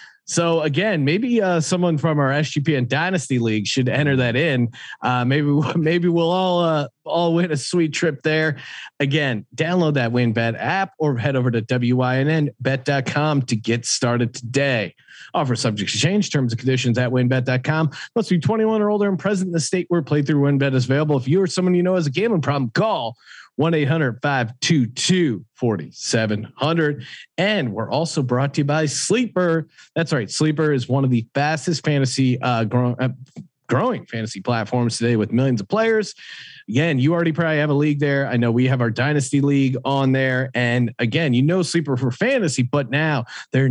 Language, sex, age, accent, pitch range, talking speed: English, male, 40-59, American, 125-160 Hz, 180 wpm